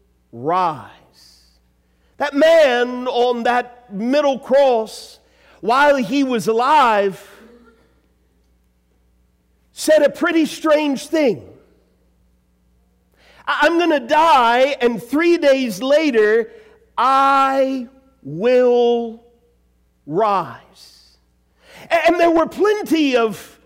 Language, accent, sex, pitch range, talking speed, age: English, American, male, 230-315 Hz, 80 wpm, 50-69